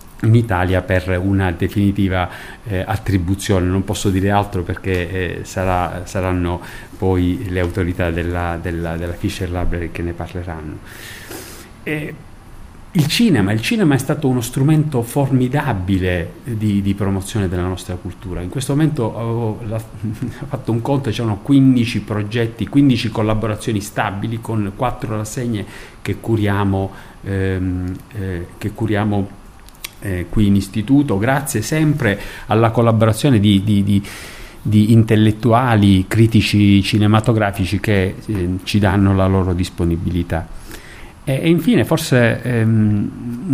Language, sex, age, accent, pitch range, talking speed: Italian, male, 40-59, native, 95-115 Hz, 125 wpm